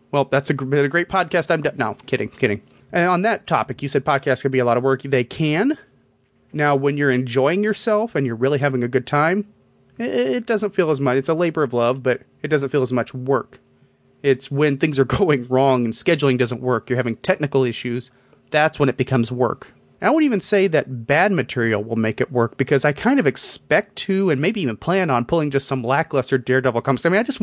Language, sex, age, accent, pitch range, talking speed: English, male, 30-49, American, 125-165 Hz, 235 wpm